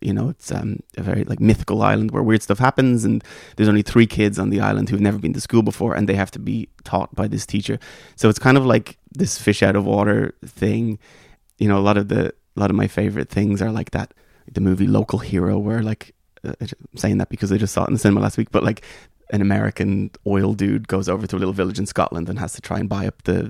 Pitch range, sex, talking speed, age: 100-115 Hz, male, 255 wpm, 20-39